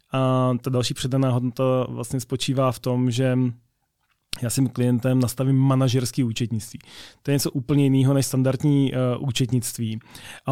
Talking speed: 145 wpm